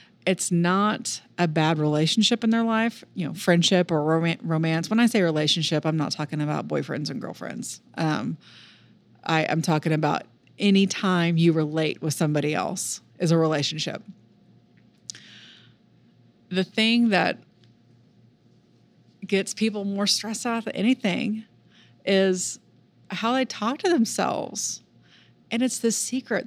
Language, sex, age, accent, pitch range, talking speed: English, female, 30-49, American, 155-195 Hz, 130 wpm